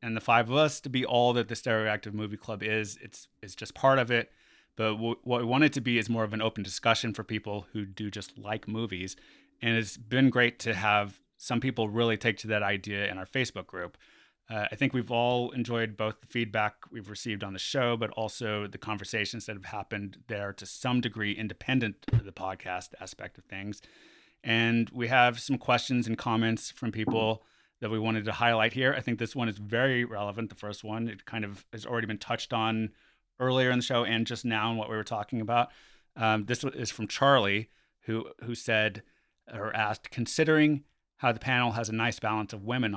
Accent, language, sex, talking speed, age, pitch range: American, English, male, 220 wpm, 30-49, 105-120 Hz